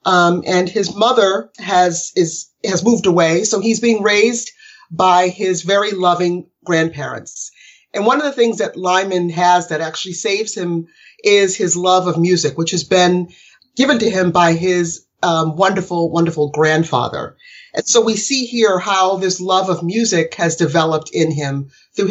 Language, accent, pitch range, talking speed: English, American, 160-195 Hz, 170 wpm